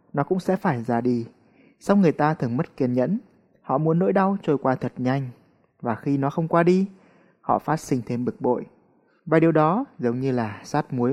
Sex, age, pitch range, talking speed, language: male, 20-39, 125-170 Hz, 220 wpm, Vietnamese